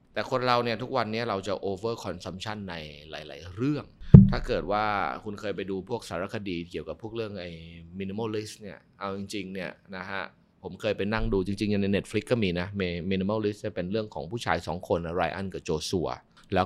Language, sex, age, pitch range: Thai, male, 20-39, 90-110 Hz